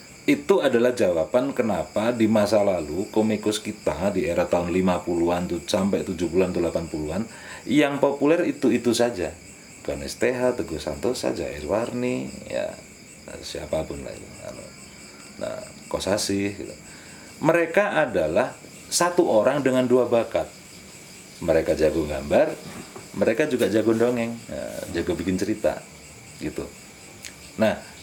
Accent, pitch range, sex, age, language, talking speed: native, 105-165 Hz, male, 40-59, Indonesian, 110 wpm